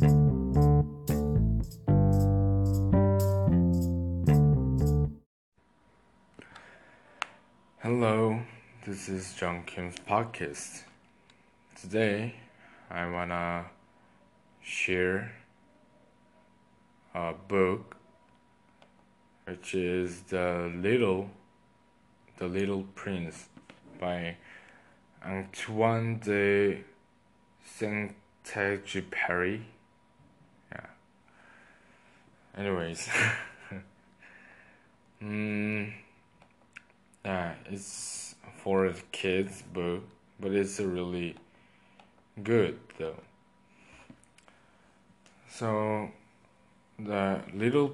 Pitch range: 85-105 Hz